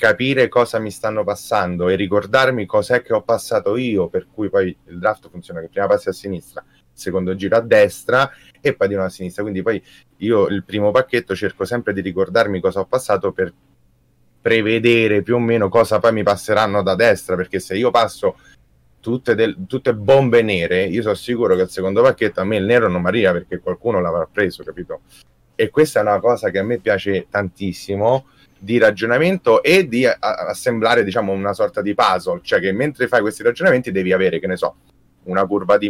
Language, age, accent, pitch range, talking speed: Italian, 30-49, native, 95-135 Hz, 195 wpm